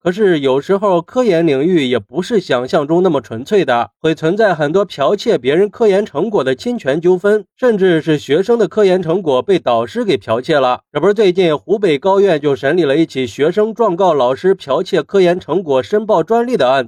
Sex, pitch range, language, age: male, 155-210 Hz, Chinese, 30-49